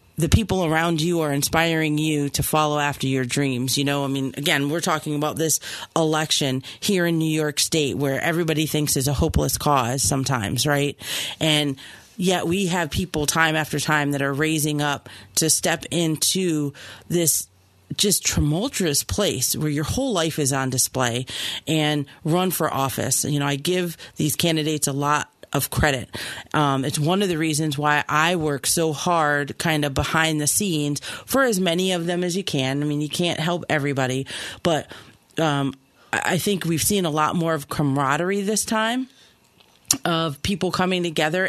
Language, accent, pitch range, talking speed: English, American, 140-170 Hz, 180 wpm